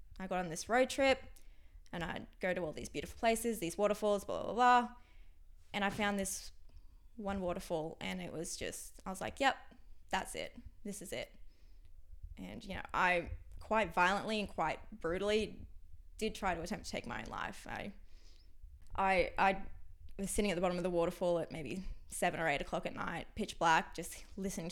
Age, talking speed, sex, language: 10-29, 190 wpm, female, English